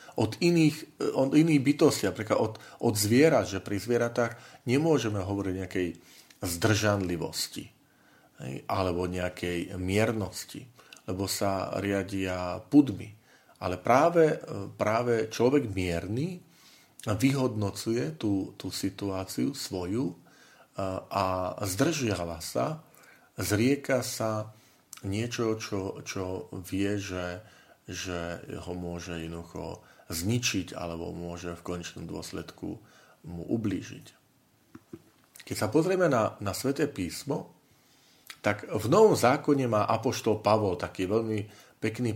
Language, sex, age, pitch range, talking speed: Slovak, male, 40-59, 95-120 Hz, 100 wpm